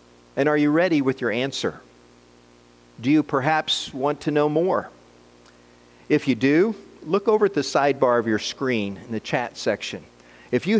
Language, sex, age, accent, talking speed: English, male, 50-69, American, 170 wpm